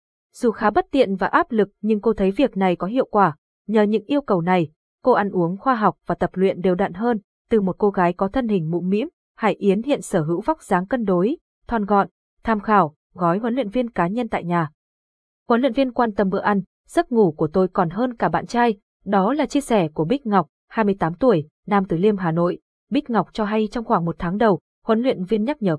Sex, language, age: female, Vietnamese, 20-39